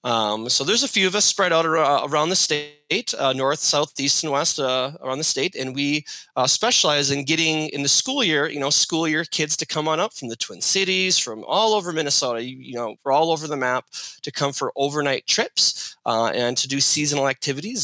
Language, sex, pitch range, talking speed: English, male, 125-155 Hz, 230 wpm